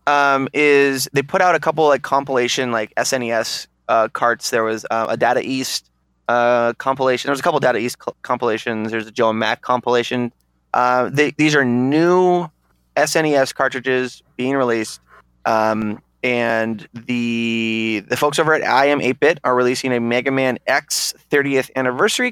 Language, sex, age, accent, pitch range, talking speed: English, male, 20-39, American, 110-140 Hz, 165 wpm